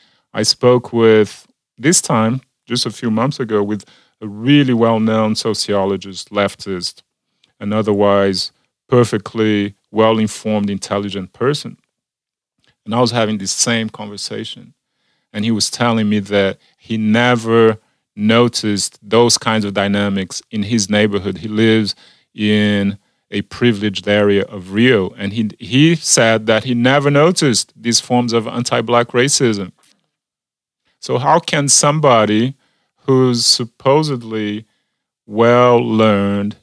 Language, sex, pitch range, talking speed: English, male, 105-125 Hz, 120 wpm